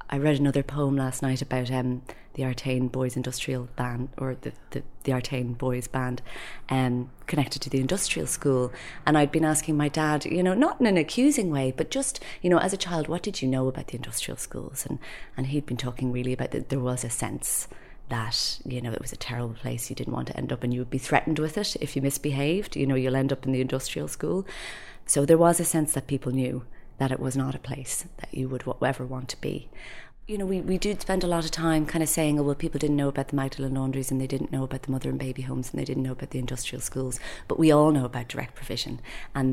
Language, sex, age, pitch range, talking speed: English, female, 30-49, 125-145 Hz, 255 wpm